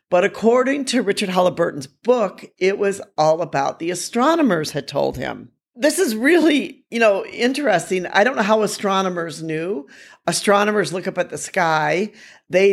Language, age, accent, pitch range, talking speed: English, 50-69, American, 160-215 Hz, 160 wpm